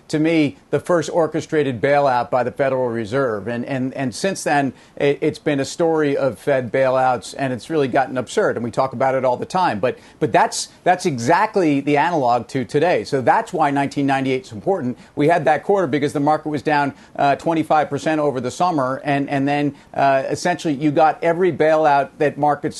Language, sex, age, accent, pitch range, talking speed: English, male, 40-59, American, 135-160 Hz, 200 wpm